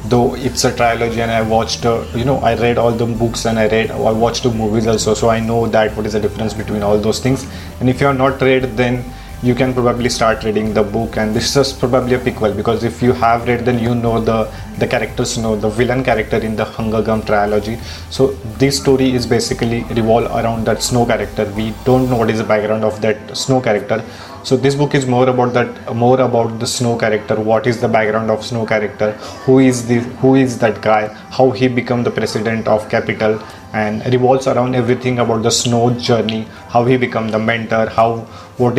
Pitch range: 110-125 Hz